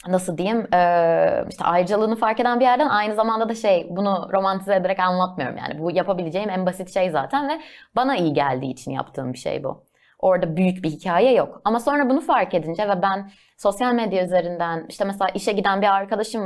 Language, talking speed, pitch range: Turkish, 195 wpm, 165-220 Hz